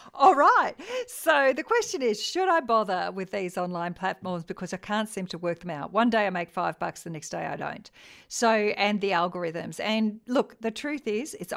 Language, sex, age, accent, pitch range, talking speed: English, female, 50-69, Australian, 165-220 Hz, 205 wpm